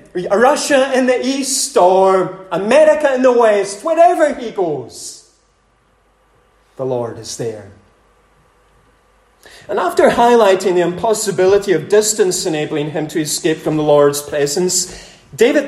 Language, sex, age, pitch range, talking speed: English, male, 30-49, 150-200 Hz, 125 wpm